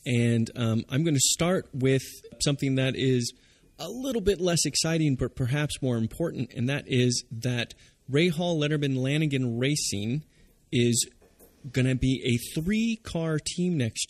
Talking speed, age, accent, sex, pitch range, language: 155 wpm, 30-49, American, male, 115-140 Hz, English